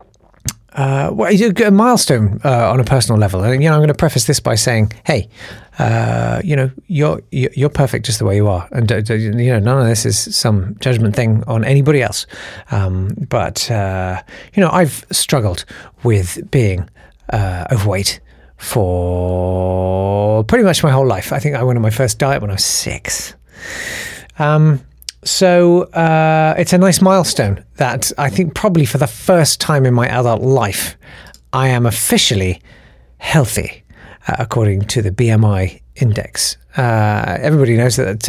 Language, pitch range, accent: English, 105-150 Hz, British